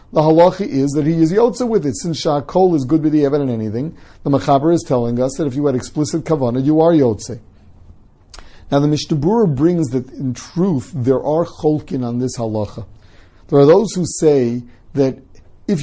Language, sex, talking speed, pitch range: English, male, 195 wpm, 125-160 Hz